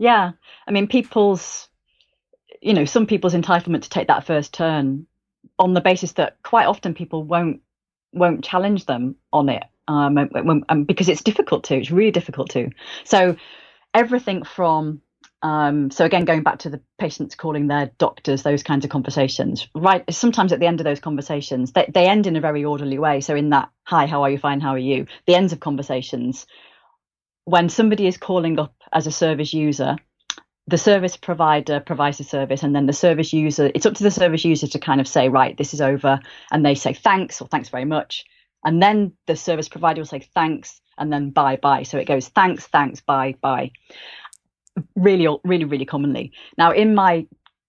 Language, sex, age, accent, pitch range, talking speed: English, female, 30-49, British, 145-180 Hz, 195 wpm